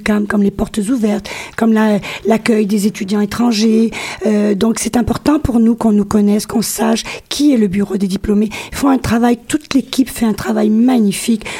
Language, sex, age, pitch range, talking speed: French, female, 40-59, 215-250 Hz, 190 wpm